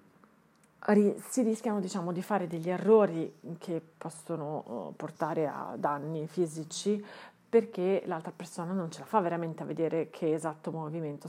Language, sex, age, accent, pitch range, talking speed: Italian, female, 40-59, native, 160-205 Hz, 140 wpm